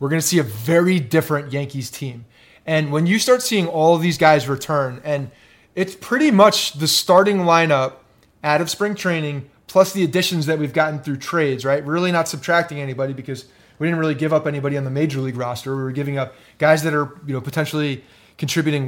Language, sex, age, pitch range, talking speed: English, male, 30-49, 140-180 Hz, 215 wpm